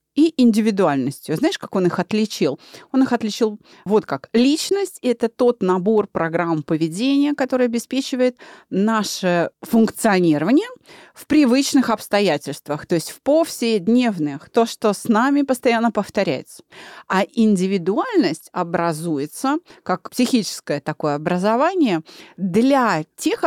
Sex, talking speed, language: female, 115 wpm, Russian